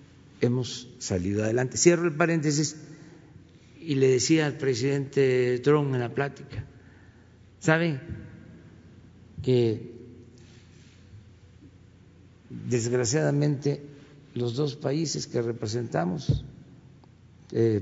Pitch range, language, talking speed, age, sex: 105-150 Hz, Spanish, 80 wpm, 50-69, male